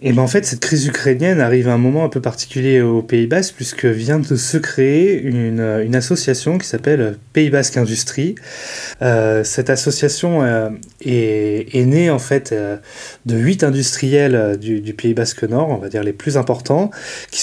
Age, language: 20-39, French